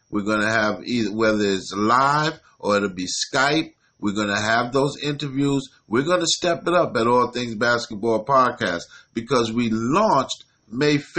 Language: English